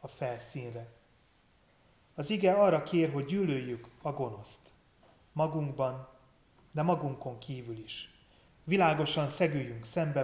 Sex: male